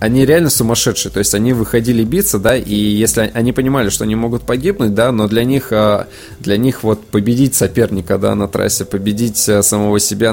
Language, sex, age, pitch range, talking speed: Russian, male, 20-39, 100-115 Hz, 185 wpm